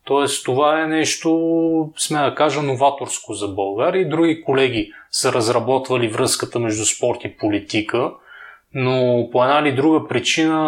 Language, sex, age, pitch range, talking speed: Bulgarian, male, 20-39, 120-150 Hz, 140 wpm